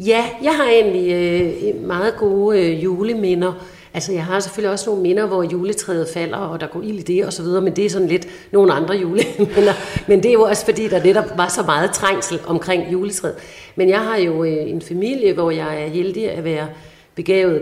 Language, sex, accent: Danish, female, native